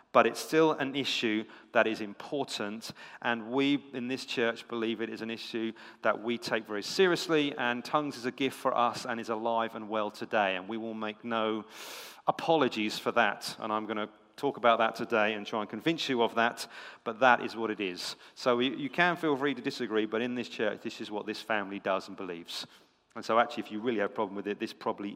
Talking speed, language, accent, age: 230 wpm, English, British, 40-59